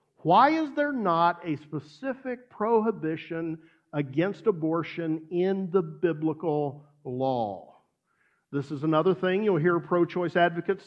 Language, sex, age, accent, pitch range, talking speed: English, male, 50-69, American, 160-215 Hz, 115 wpm